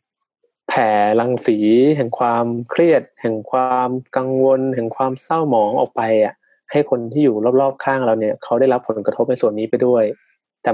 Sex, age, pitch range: male, 20-39, 115-135 Hz